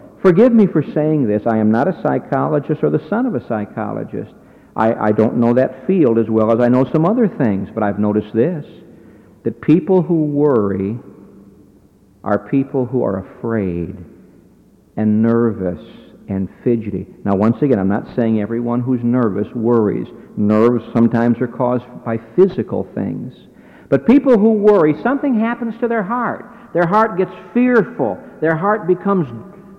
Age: 60-79